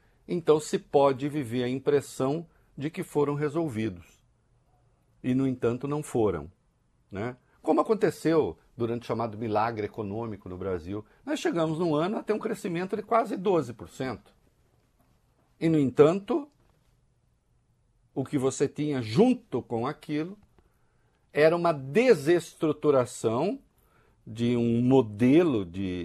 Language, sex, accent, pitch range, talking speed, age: Portuguese, male, Brazilian, 115-170 Hz, 120 wpm, 60-79